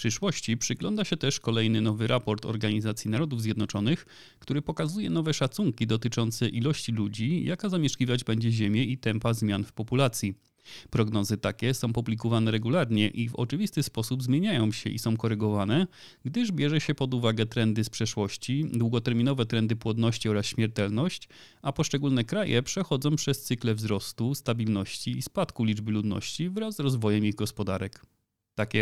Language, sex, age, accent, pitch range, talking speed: Polish, male, 30-49, native, 110-135 Hz, 150 wpm